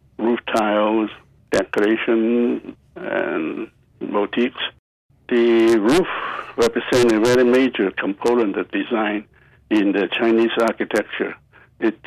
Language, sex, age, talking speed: English, male, 60-79, 95 wpm